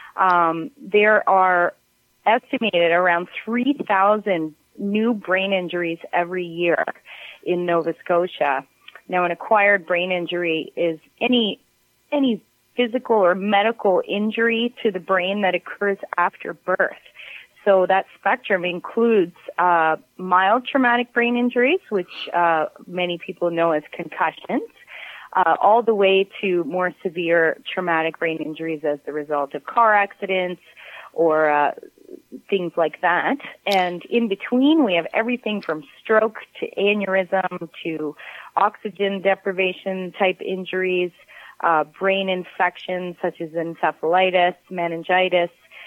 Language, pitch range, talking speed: English, 170-210 Hz, 120 wpm